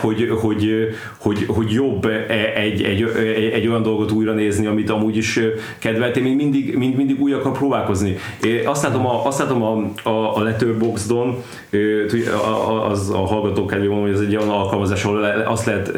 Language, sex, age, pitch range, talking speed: Hungarian, male, 30-49, 100-125 Hz, 165 wpm